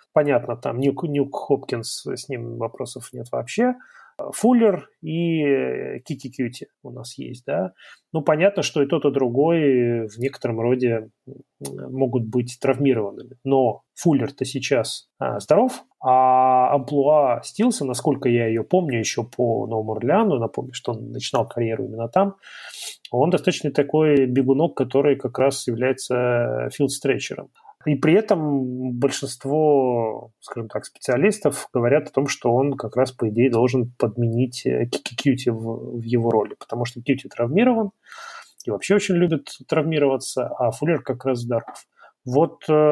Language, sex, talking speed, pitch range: Russian, male, 140 wpm, 120-150 Hz